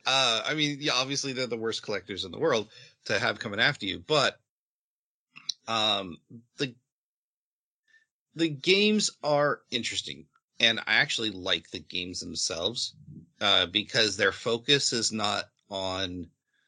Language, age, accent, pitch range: English, 30-49, American, 90-130 Hz